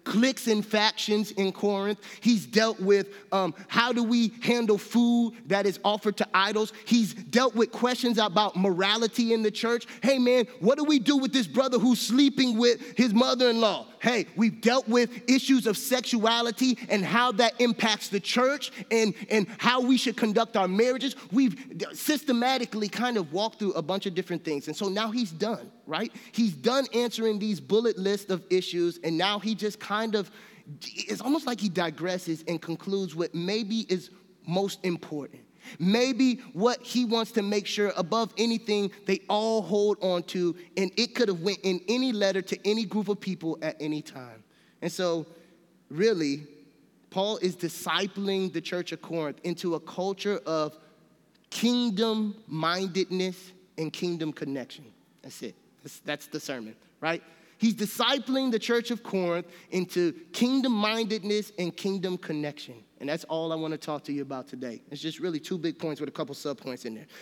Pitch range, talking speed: 175-230 Hz, 175 wpm